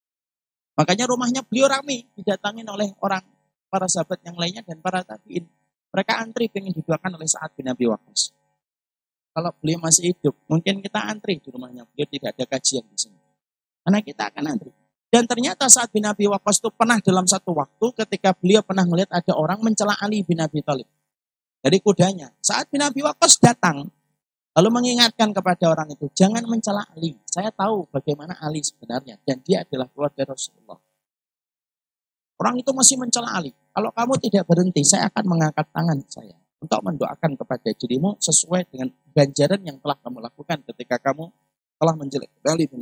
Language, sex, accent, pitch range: Indonesian, male, native, 145-205 Hz